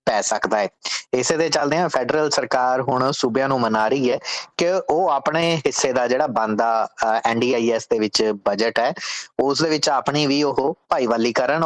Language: English